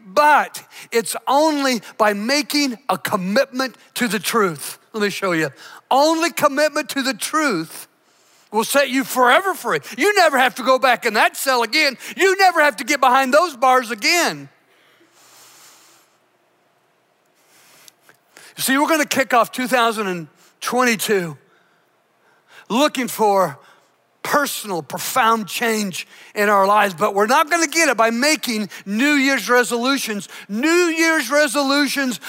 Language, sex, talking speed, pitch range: English, male, 135 wpm, 225-310 Hz